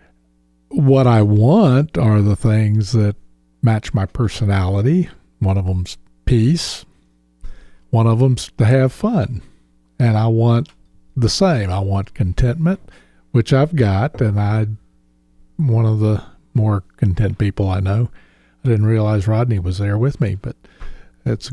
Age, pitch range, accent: 50-69, 100-130 Hz, American